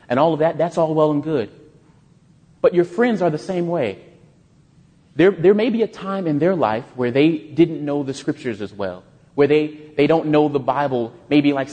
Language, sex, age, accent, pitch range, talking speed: English, male, 30-49, American, 135-160 Hz, 215 wpm